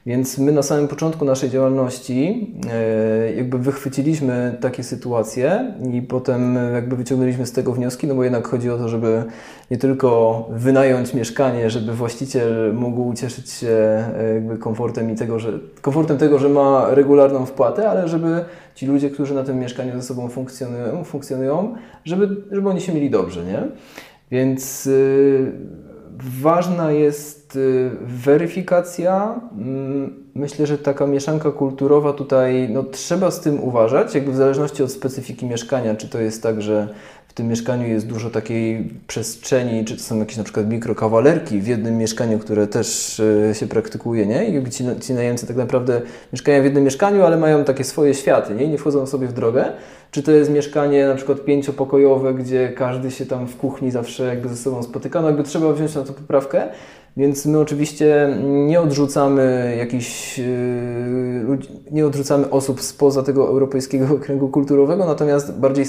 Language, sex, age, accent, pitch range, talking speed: Polish, male, 20-39, native, 125-145 Hz, 160 wpm